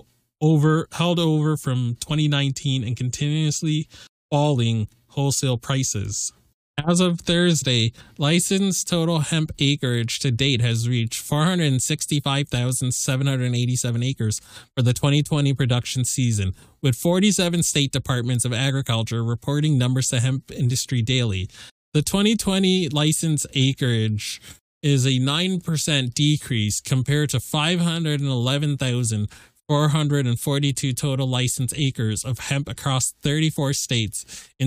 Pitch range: 125-150 Hz